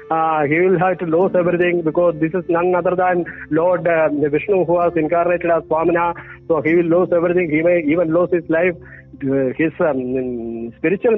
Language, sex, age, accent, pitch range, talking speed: English, male, 50-69, Indian, 165-205 Hz, 195 wpm